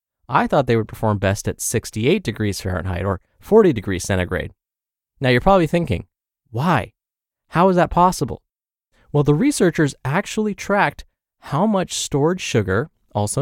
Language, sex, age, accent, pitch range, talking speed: English, male, 20-39, American, 110-170 Hz, 150 wpm